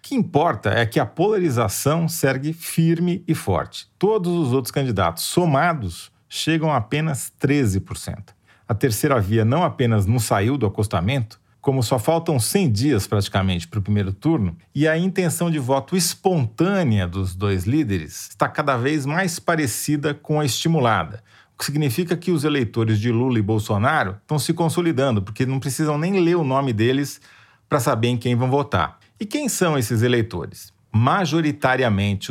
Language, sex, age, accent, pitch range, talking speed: Portuguese, male, 40-59, Brazilian, 110-160 Hz, 165 wpm